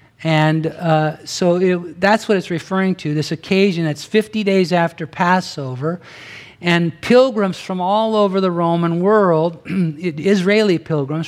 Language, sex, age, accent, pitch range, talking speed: English, male, 50-69, American, 135-175 Hz, 135 wpm